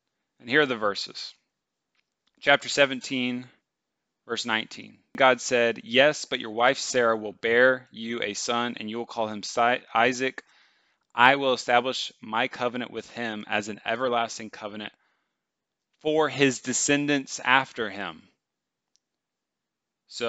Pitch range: 105-130 Hz